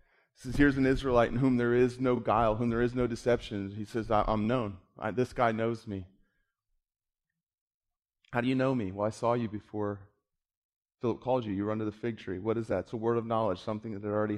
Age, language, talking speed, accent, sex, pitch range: 30-49, English, 240 wpm, American, male, 95-115 Hz